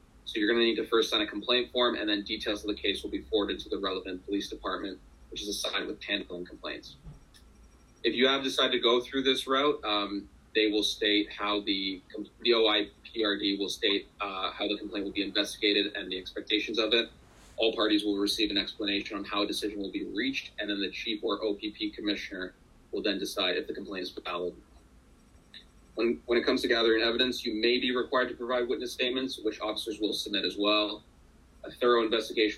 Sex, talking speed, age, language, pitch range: male, 210 wpm, 30-49, English, 100-125 Hz